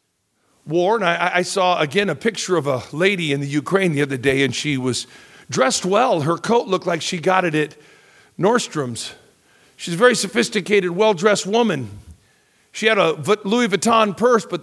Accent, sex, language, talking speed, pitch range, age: American, male, English, 180 wpm, 150-210 Hz, 50-69